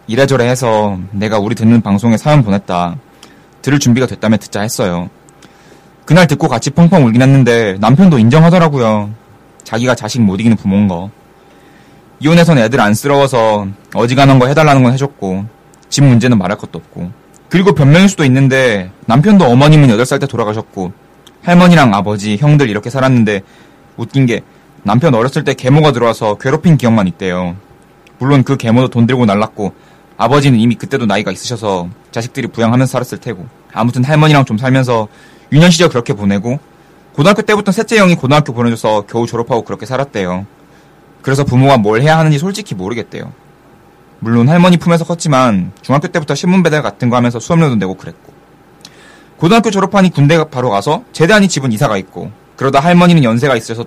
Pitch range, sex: 110-150 Hz, male